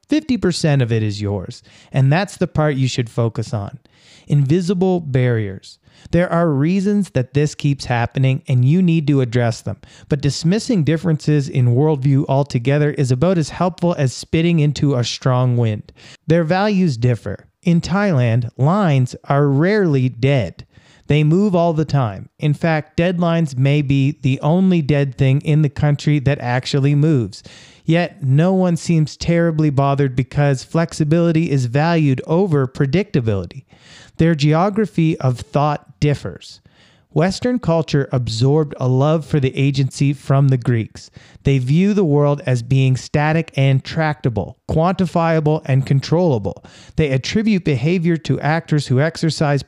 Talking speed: 145 wpm